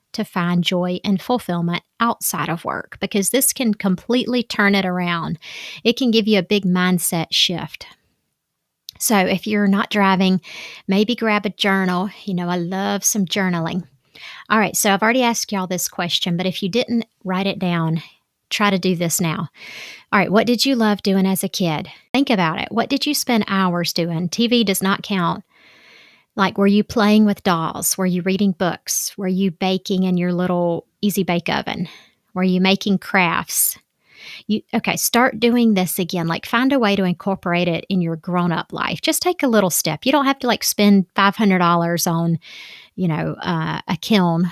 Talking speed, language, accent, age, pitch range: 190 wpm, English, American, 30-49, 175-210 Hz